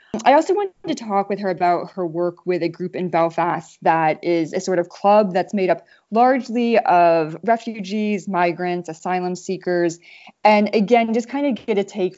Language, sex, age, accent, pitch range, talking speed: English, female, 20-39, American, 165-200 Hz, 185 wpm